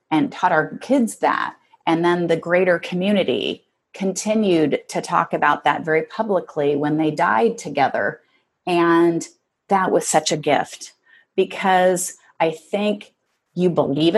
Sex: female